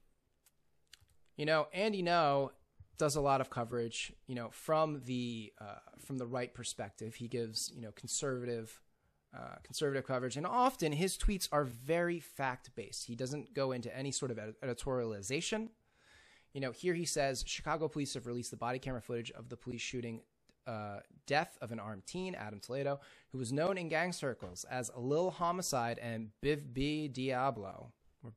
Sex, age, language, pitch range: male, 20-39, English, 120-155 Hz